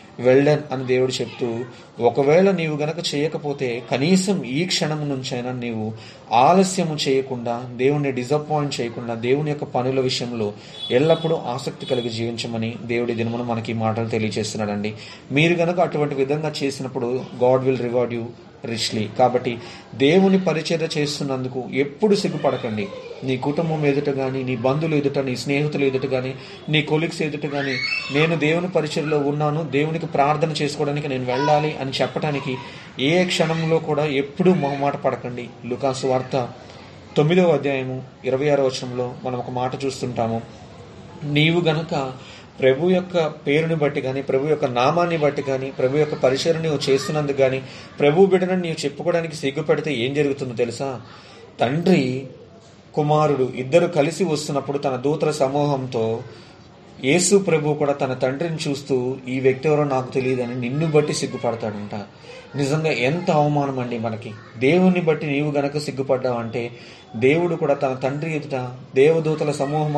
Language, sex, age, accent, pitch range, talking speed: Telugu, male, 30-49, native, 125-155 Hz, 130 wpm